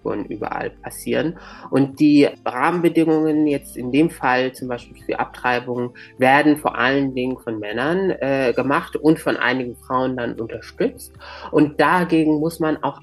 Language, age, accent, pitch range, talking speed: German, 30-49, German, 120-145 Hz, 145 wpm